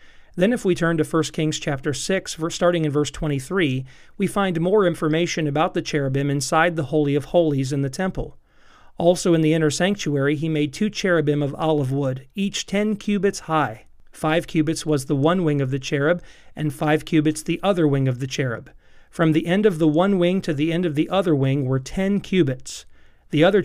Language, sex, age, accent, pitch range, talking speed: English, male, 40-59, American, 145-180 Hz, 205 wpm